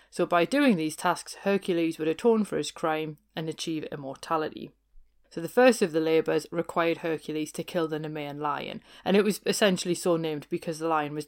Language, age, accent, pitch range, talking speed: English, 30-49, British, 160-190 Hz, 195 wpm